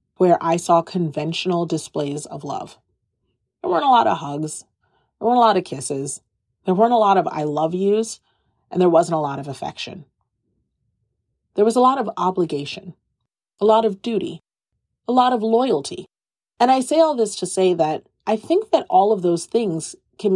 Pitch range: 155-215 Hz